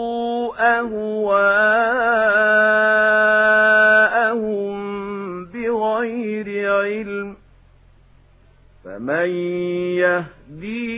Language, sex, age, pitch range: Arabic, male, 40-59, 175-215 Hz